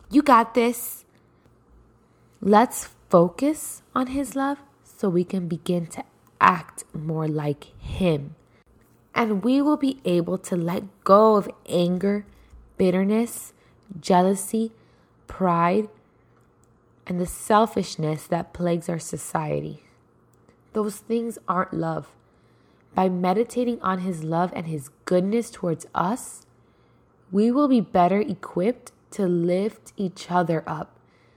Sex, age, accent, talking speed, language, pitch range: female, 20-39, American, 115 wpm, English, 165-215 Hz